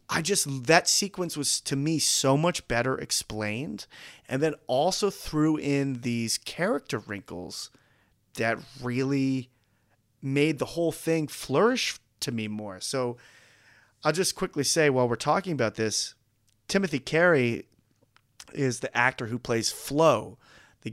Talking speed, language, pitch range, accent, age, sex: 140 wpm, English, 110-150 Hz, American, 30-49, male